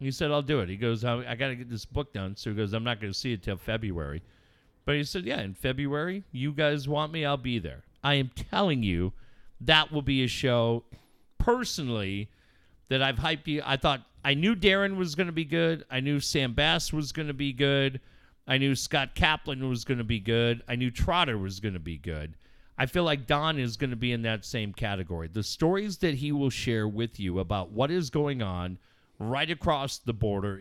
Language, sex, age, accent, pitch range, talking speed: English, male, 40-59, American, 105-150 Hz, 230 wpm